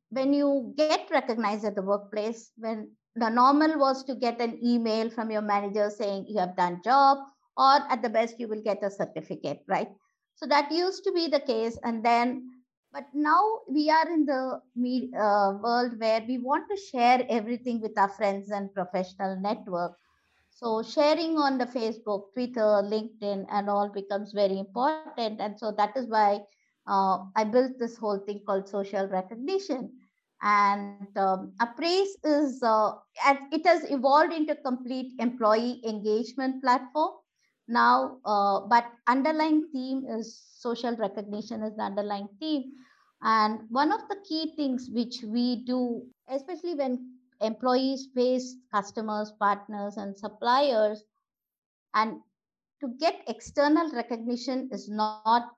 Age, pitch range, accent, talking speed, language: 50-69, 210-270 Hz, Indian, 150 wpm, English